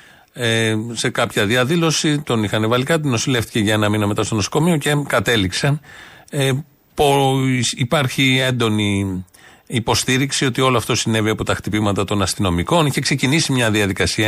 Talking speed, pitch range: 135 wpm, 110-145 Hz